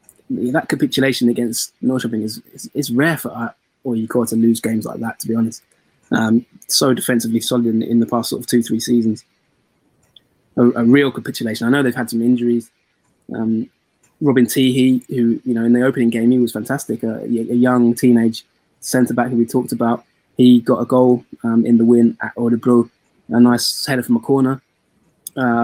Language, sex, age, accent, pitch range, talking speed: English, male, 20-39, British, 115-130 Hz, 195 wpm